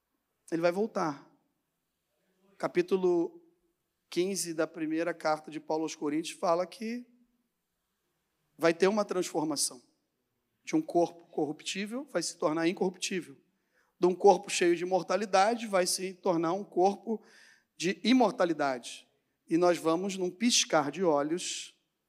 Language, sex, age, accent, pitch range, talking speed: Portuguese, male, 40-59, Brazilian, 170-210 Hz, 125 wpm